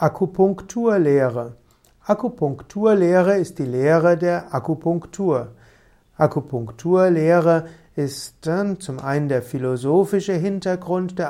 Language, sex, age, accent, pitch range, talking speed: German, male, 60-79, German, 135-175 Hz, 85 wpm